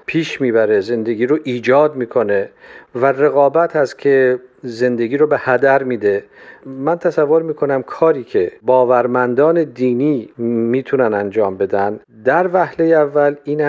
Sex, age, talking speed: male, 40-59, 125 wpm